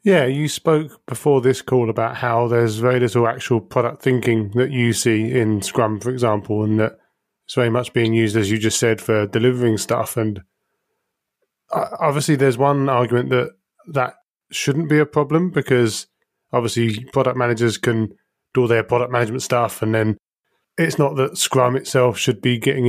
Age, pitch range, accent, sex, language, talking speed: 30-49, 115-135 Hz, British, male, English, 175 wpm